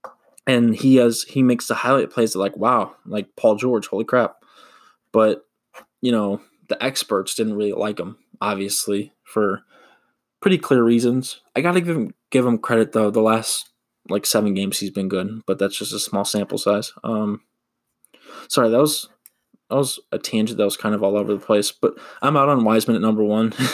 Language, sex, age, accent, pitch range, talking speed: English, male, 20-39, American, 100-115 Hz, 195 wpm